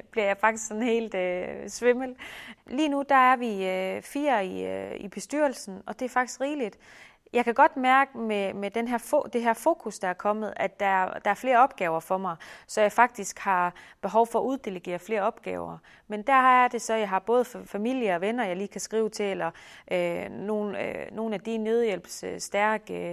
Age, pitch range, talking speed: 30-49, 195-235 Hz, 210 wpm